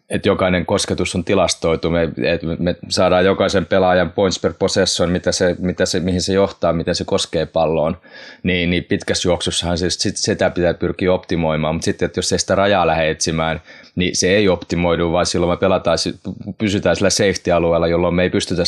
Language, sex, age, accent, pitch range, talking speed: Finnish, male, 20-39, native, 85-95 Hz, 180 wpm